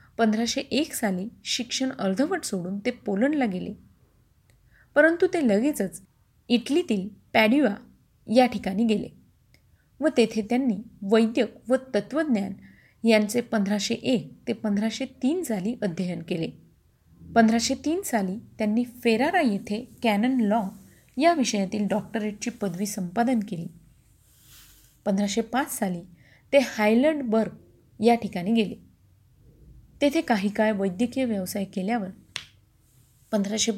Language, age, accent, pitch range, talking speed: Marathi, 30-49, native, 195-245 Hz, 100 wpm